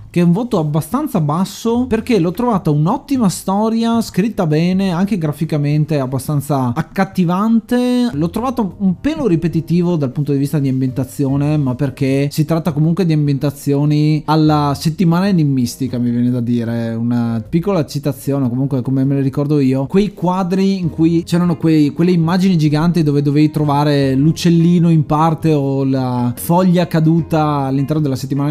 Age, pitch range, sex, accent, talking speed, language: 20-39, 135-175 Hz, male, native, 150 wpm, Italian